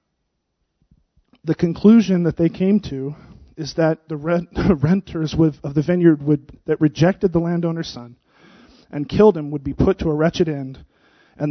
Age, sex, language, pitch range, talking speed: 30-49, male, English, 150-180 Hz, 155 wpm